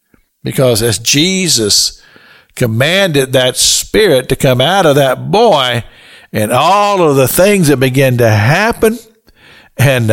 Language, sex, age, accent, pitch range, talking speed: English, male, 60-79, American, 115-155 Hz, 130 wpm